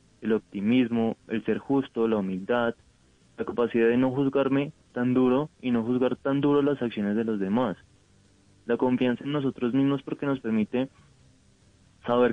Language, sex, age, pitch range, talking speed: Spanish, male, 20-39, 110-135 Hz, 160 wpm